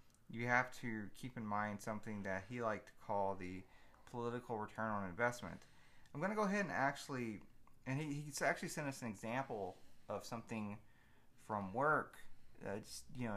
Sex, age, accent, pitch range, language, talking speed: male, 30-49, American, 110-140 Hz, English, 180 wpm